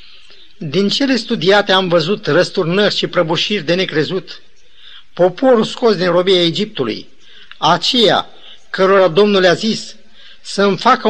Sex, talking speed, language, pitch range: male, 120 wpm, Romanian, 160-205 Hz